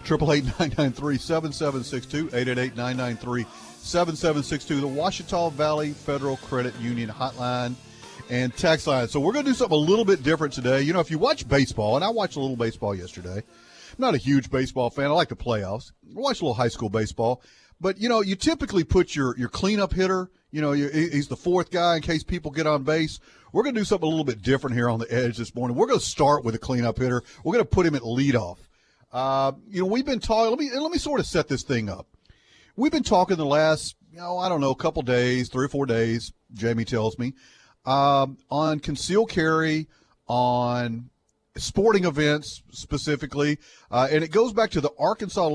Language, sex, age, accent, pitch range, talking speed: English, male, 40-59, American, 120-160 Hz, 205 wpm